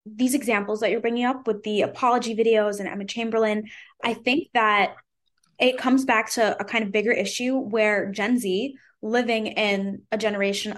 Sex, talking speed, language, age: female, 180 wpm, English, 10-29